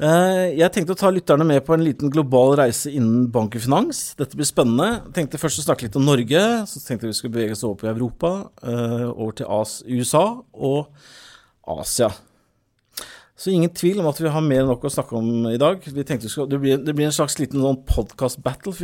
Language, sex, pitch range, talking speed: English, male, 120-150 Hz, 210 wpm